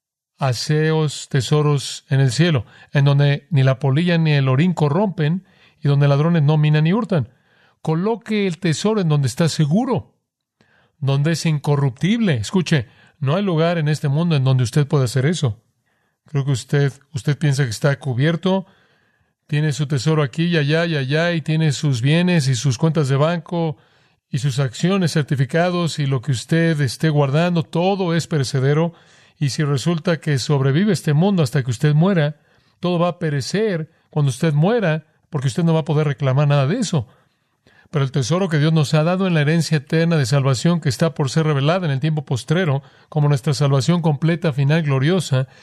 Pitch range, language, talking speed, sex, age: 140-165 Hz, Spanish, 185 wpm, male, 40-59